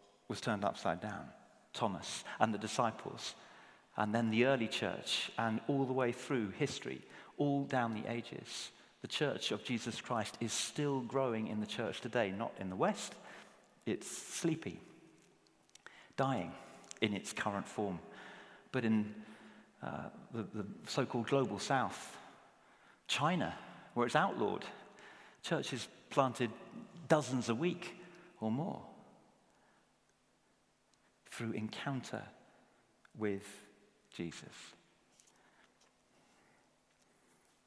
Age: 40-59